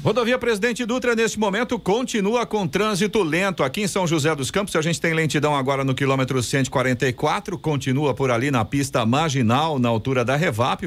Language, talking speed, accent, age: Portuguese, 180 wpm, Brazilian, 50-69